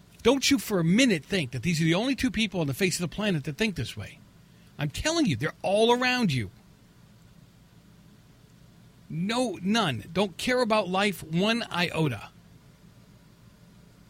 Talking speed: 160 wpm